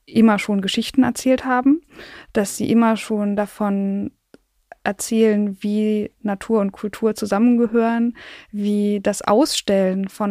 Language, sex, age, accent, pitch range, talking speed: German, female, 20-39, German, 200-230 Hz, 115 wpm